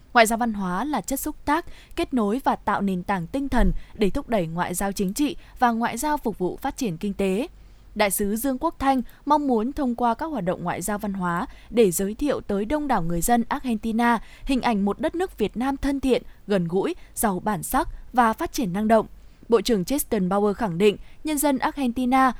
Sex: female